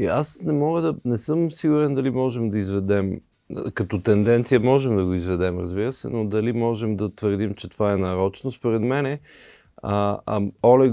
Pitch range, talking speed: 95-115 Hz, 180 wpm